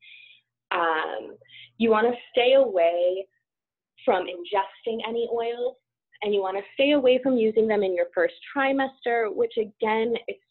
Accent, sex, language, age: American, female, English, 20-39